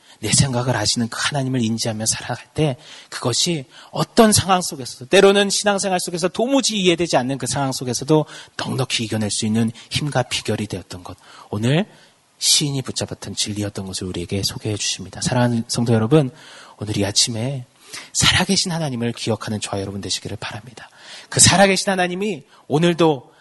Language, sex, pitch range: Korean, male, 105-145 Hz